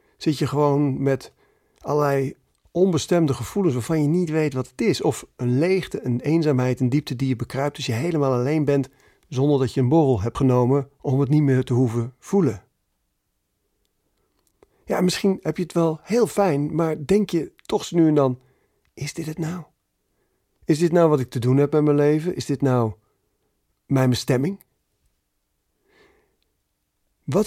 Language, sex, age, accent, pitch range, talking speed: Dutch, male, 40-59, Dutch, 125-165 Hz, 175 wpm